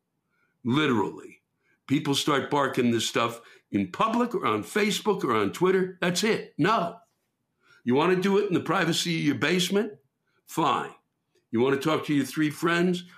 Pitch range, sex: 120-175 Hz, male